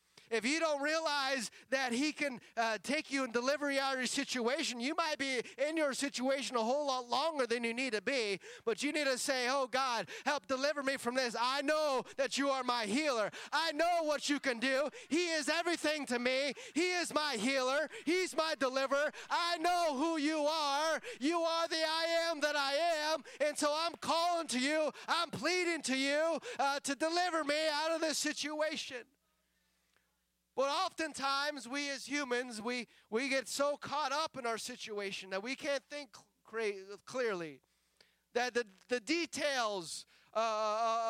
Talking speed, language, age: 185 wpm, English, 30-49